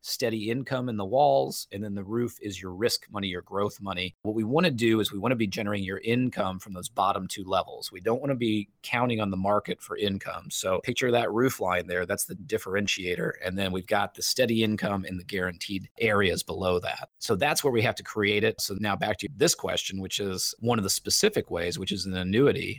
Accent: American